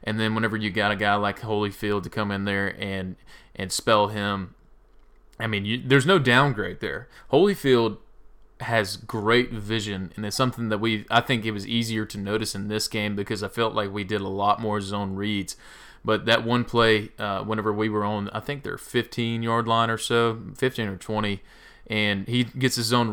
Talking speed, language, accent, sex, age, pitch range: 205 wpm, English, American, male, 20-39, 105-115 Hz